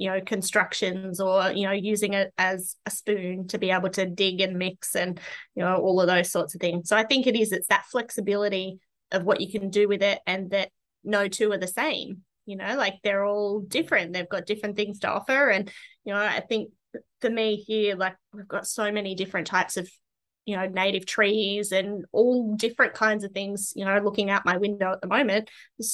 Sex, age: female, 20-39